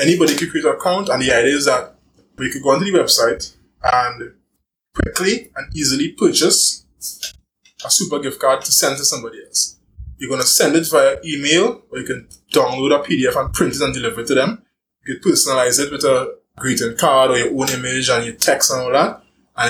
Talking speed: 215 wpm